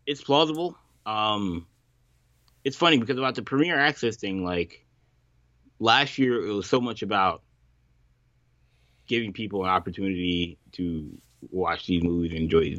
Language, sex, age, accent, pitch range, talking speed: English, male, 20-39, American, 90-120 Hz, 140 wpm